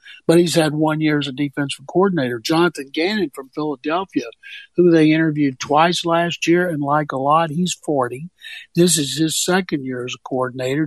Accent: American